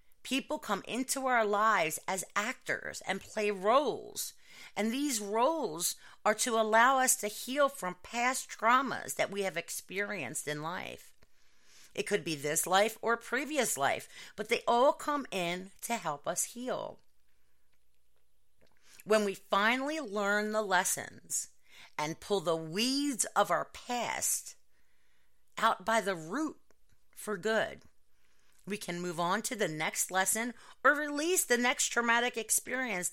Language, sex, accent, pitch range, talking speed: English, female, American, 170-235 Hz, 140 wpm